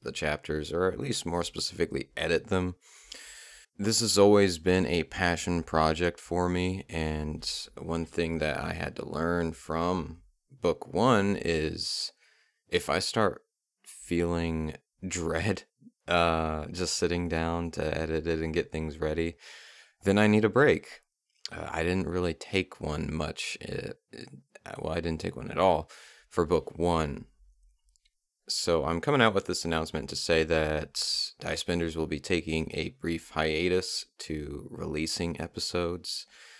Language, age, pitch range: English, 30-49, 80-90 Hz